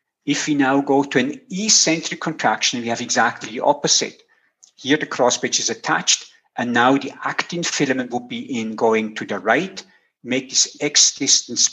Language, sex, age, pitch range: English, male, 50-69, 120-180 Hz